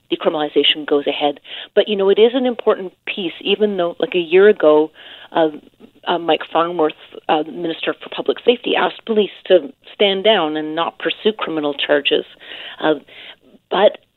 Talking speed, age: 160 wpm, 40-59